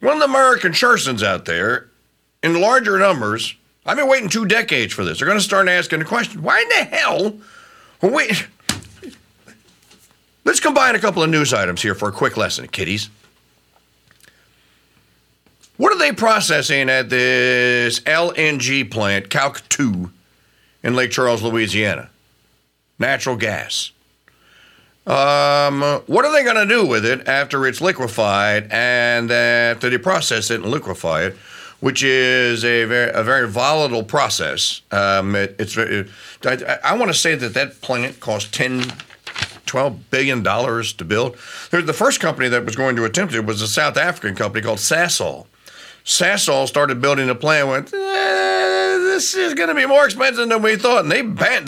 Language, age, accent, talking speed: English, 50-69, American, 165 wpm